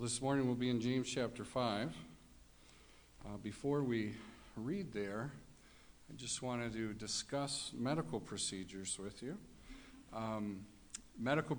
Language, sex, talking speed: English, male, 120 wpm